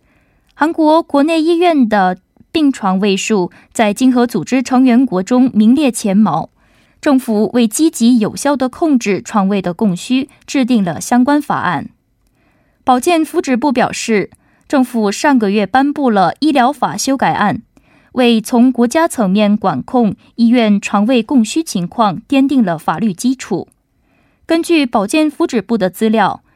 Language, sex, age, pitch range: Korean, female, 20-39, 210-280 Hz